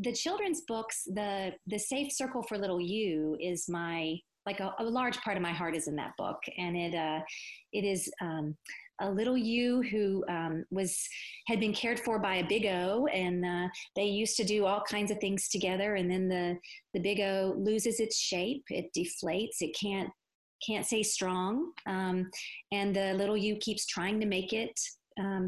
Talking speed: 195 wpm